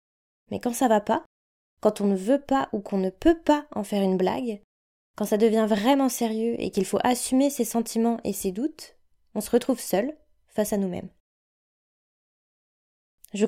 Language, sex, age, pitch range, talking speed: French, female, 20-39, 205-260 Hz, 185 wpm